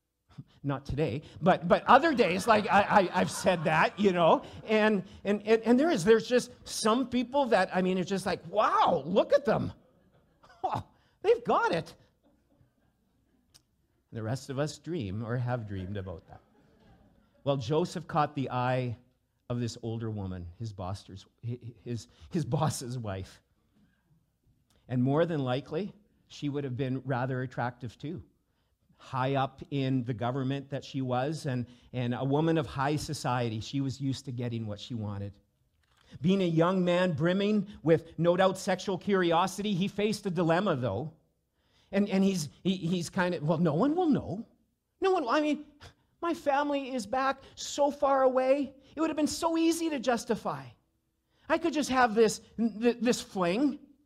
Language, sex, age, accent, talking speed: English, male, 50-69, American, 165 wpm